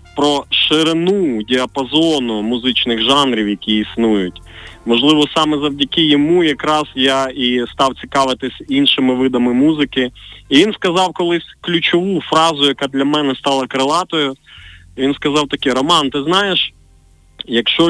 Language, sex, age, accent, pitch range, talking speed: Ukrainian, male, 20-39, native, 115-155 Hz, 125 wpm